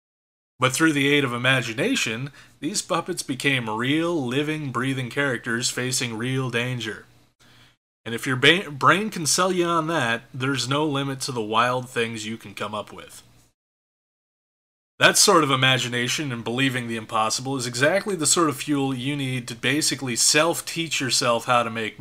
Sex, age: male, 30-49